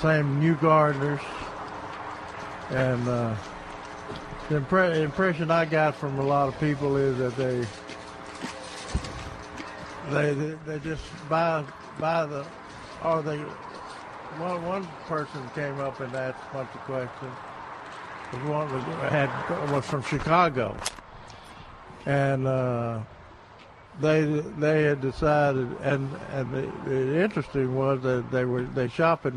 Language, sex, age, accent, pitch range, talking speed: English, male, 60-79, American, 125-150 Hz, 130 wpm